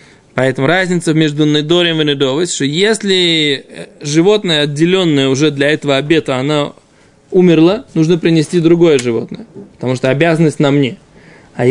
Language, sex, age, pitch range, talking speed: Russian, male, 20-39, 150-200 Hz, 140 wpm